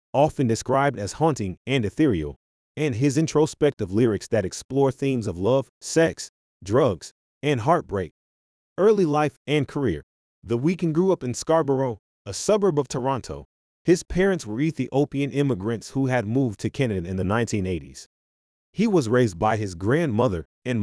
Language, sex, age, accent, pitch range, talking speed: English, male, 30-49, American, 95-145 Hz, 155 wpm